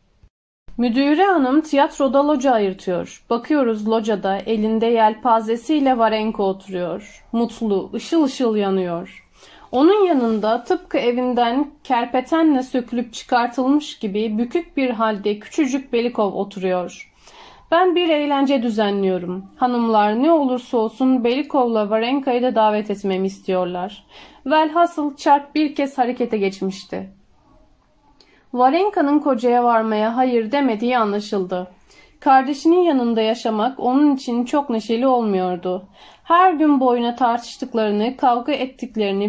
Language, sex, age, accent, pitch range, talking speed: Turkish, female, 40-59, native, 215-275 Hz, 105 wpm